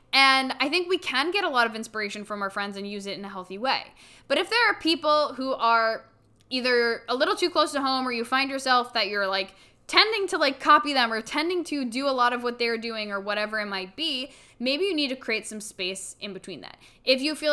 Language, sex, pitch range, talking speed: English, female, 215-265 Hz, 255 wpm